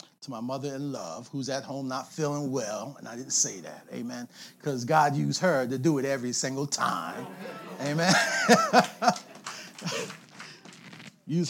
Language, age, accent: English, 40-59, American